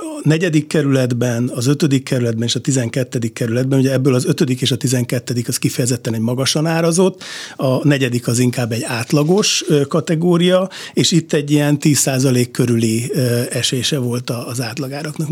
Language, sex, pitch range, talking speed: Hungarian, male, 125-155 Hz, 155 wpm